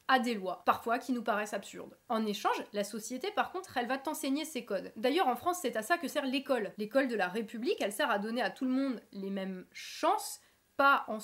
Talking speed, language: 240 wpm, French